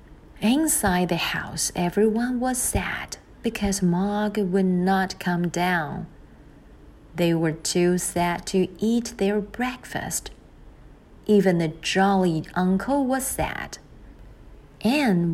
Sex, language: female, Chinese